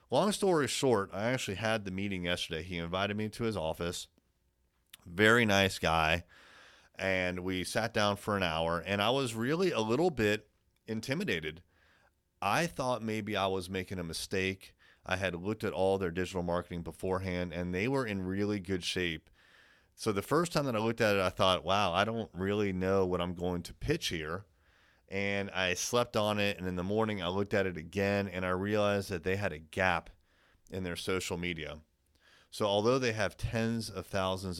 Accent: American